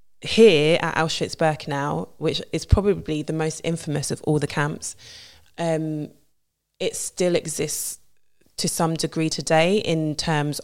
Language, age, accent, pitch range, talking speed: English, 20-39, British, 145-160 Hz, 130 wpm